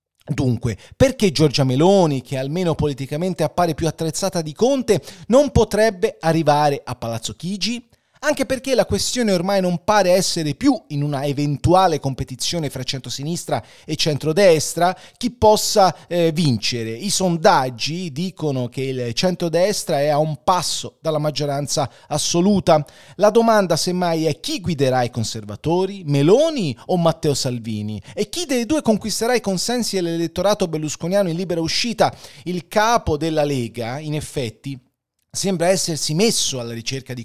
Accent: native